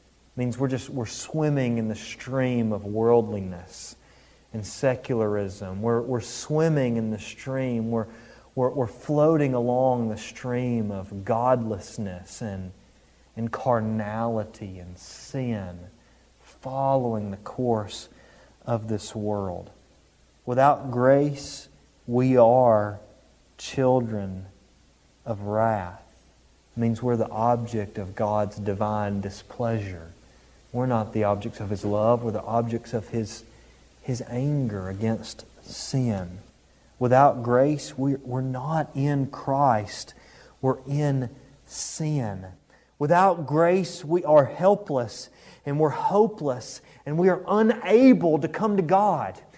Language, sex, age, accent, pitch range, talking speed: English, male, 30-49, American, 105-145 Hz, 115 wpm